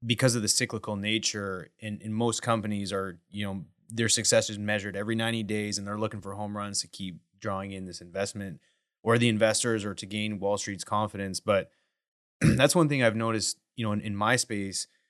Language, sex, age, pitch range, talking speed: English, male, 20-39, 105-115 Hz, 205 wpm